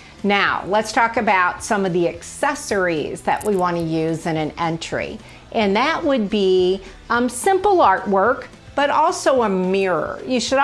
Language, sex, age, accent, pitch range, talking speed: English, female, 40-59, American, 190-255 Hz, 160 wpm